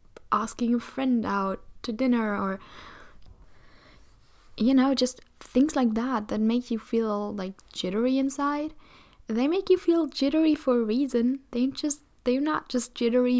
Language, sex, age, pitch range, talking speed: English, female, 10-29, 220-275 Hz, 150 wpm